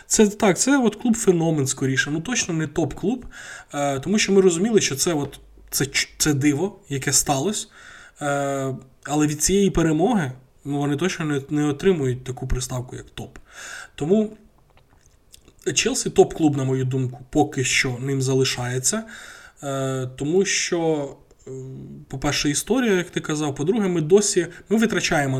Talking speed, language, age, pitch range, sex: 135 wpm, Ukrainian, 20-39, 135-185 Hz, male